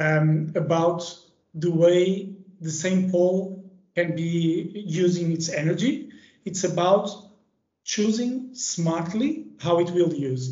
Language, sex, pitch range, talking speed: English, male, 155-190 Hz, 115 wpm